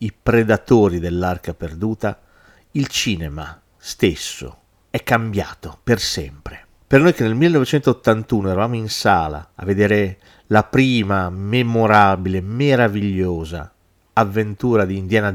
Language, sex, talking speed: Italian, male, 110 wpm